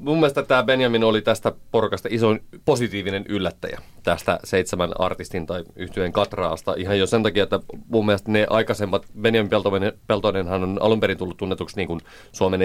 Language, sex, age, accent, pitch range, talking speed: Finnish, male, 30-49, native, 95-115 Hz, 165 wpm